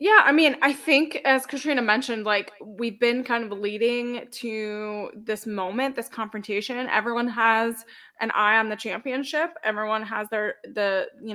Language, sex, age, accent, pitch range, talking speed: English, female, 20-39, American, 210-235 Hz, 165 wpm